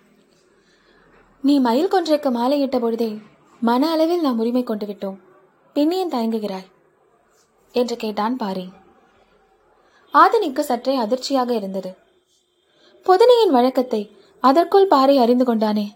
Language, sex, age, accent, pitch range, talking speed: Tamil, female, 20-39, native, 215-290 Hz, 95 wpm